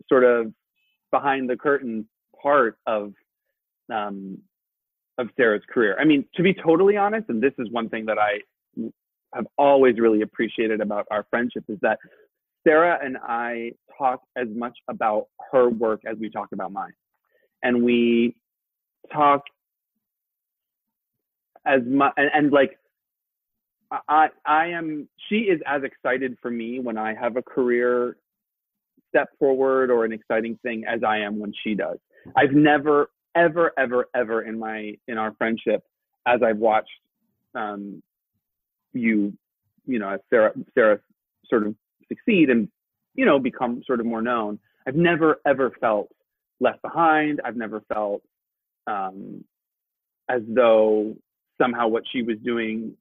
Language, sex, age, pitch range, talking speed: English, male, 30-49, 110-145 Hz, 145 wpm